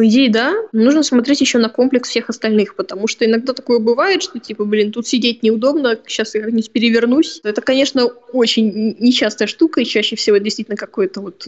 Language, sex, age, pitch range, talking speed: Russian, female, 20-39, 215-275 Hz, 185 wpm